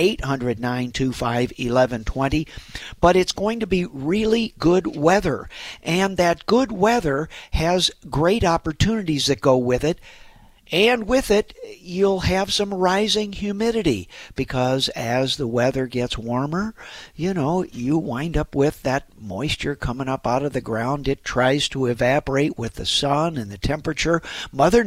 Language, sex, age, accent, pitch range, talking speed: English, male, 50-69, American, 130-175 Hz, 140 wpm